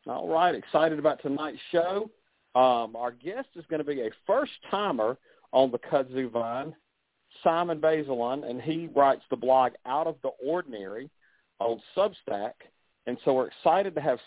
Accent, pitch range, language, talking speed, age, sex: American, 120-150 Hz, English, 160 wpm, 50-69, male